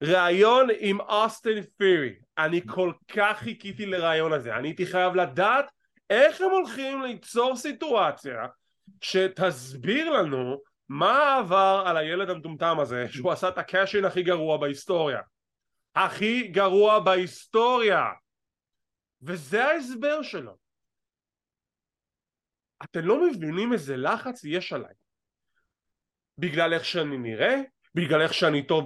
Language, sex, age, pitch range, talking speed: English, male, 30-49, 170-280 Hz, 95 wpm